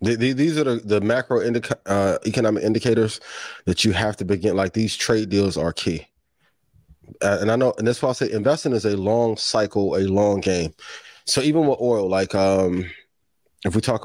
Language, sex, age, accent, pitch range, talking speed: English, male, 20-39, American, 95-115 Hz, 190 wpm